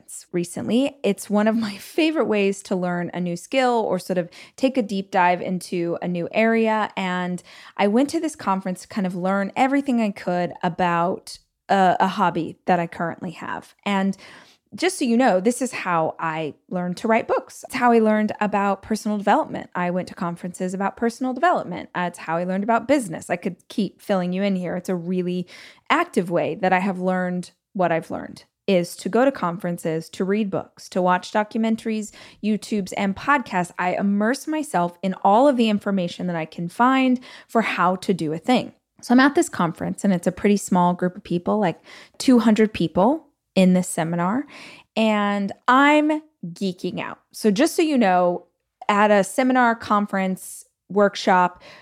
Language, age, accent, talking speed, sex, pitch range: English, 20-39, American, 185 wpm, female, 180-230 Hz